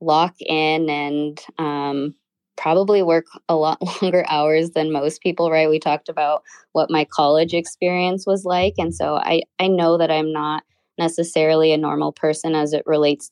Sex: female